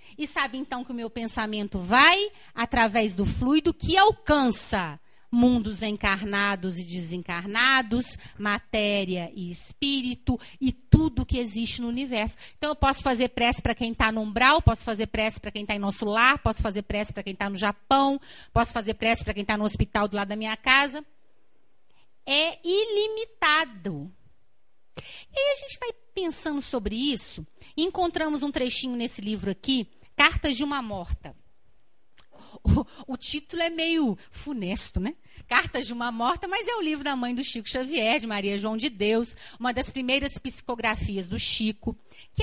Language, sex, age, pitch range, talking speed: Portuguese, female, 40-59, 220-320 Hz, 165 wpm